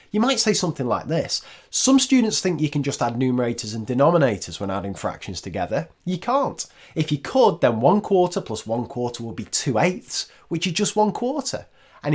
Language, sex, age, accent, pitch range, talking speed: English, male, 30-49, British, 105-170 Hz, 205 wpm